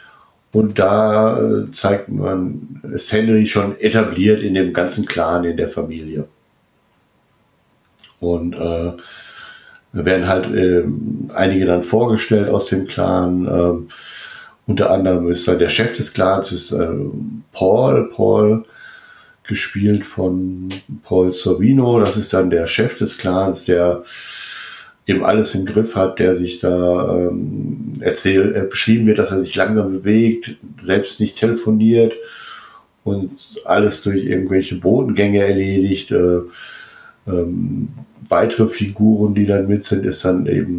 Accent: German